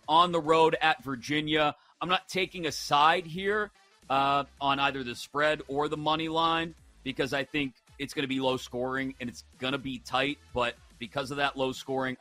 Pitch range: 115-155 Hz